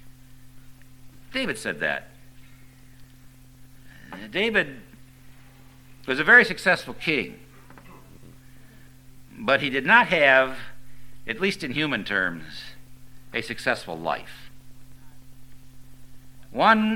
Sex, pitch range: male, 130-140 Hz